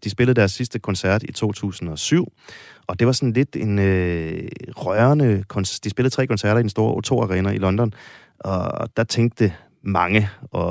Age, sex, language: 30-49, male, Danish